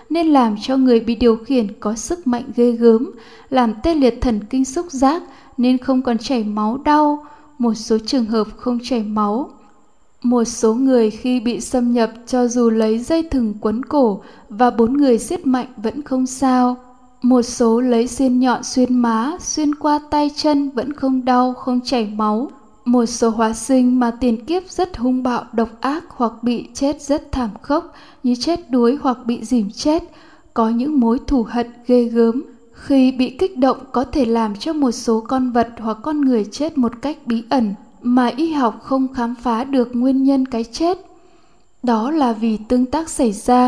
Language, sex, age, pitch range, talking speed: Vietnamese, female, 10-29, 230-270 Hz, 195 wpm